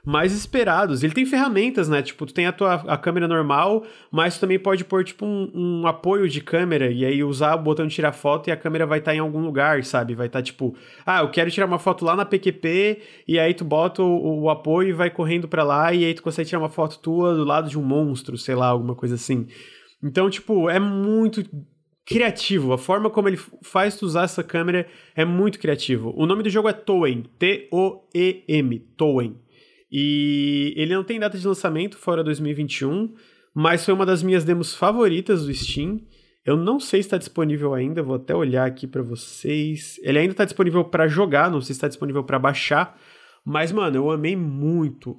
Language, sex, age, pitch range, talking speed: Portuguese, male, 20-39, 145-190 Hz, 210 wpm